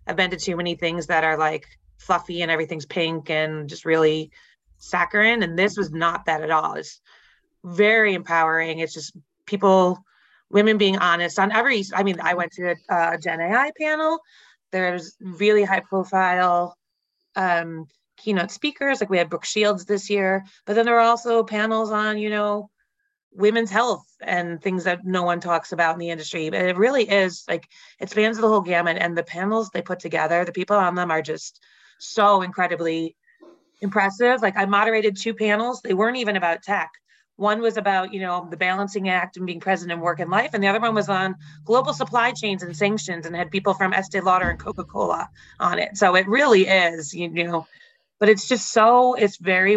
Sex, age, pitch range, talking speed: female, 30-49, 170-210 Hz, 195 wpm